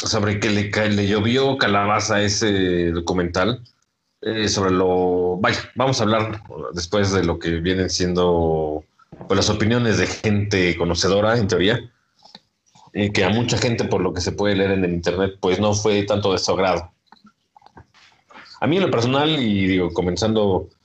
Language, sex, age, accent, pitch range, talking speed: Spanish, male, 40-59, Mexican, 90-110 Hz, 170 wpm